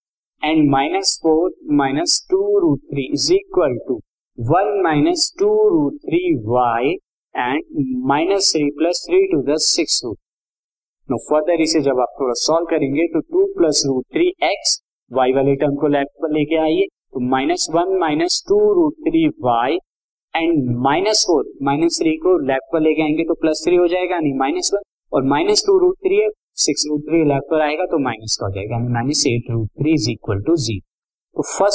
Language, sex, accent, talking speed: Hindi, male, native, 115 wpm